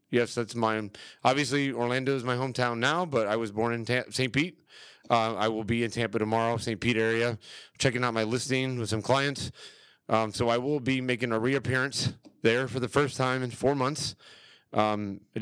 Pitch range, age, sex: 110-130 Hz, 30-49, male